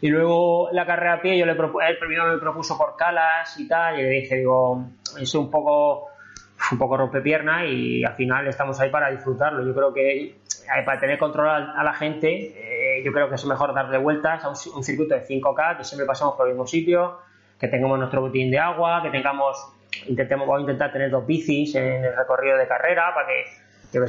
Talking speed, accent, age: 220 wpm, Spanish, 20-39